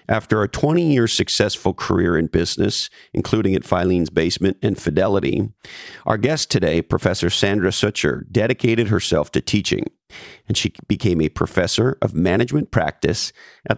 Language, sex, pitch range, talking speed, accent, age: English, male, 90-115 Hz, 140 wpm, American, 50-69